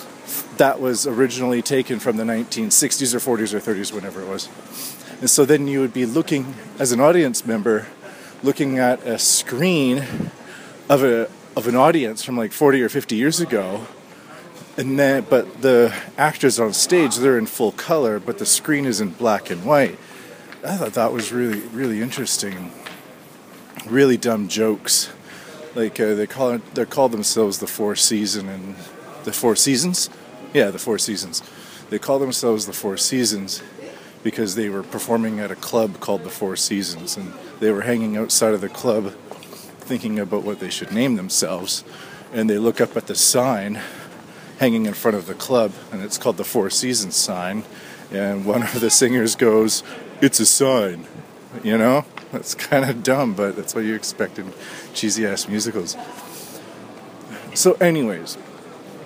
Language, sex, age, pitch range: English, male, 30-49, 105-130 Hz